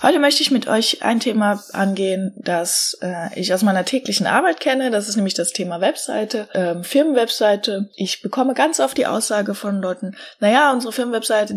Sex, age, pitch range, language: female, 20-39, 190-255 Hz, German